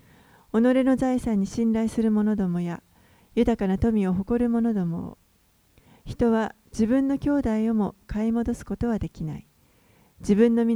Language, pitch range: Japanese, 185-235 Hz